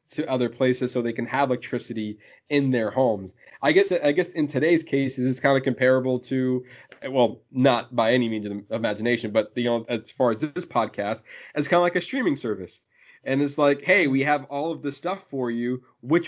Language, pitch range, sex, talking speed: English, 115-145 Hz, male, 220 wpm